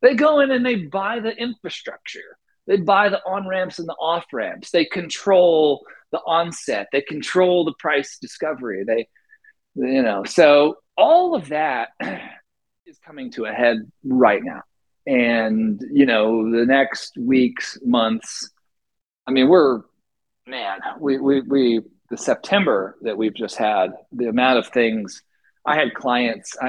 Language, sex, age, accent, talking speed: English, male, 40-59, American, 150 wpm